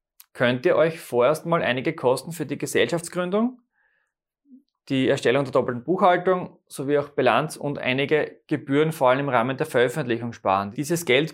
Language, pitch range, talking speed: German, 130-170 Hz, 160 wpm